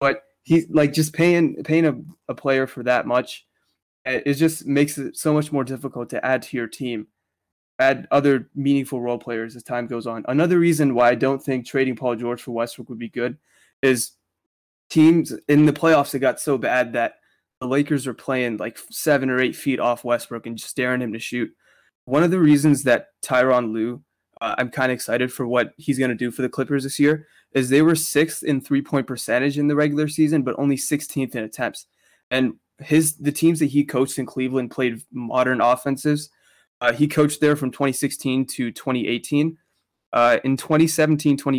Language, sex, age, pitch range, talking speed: English, male, 20-39, 125-145 Hz, 195 wpm